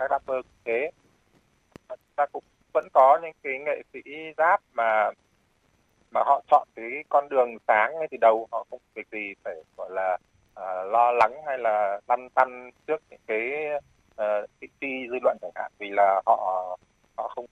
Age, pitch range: 20-39, 105-145 Hz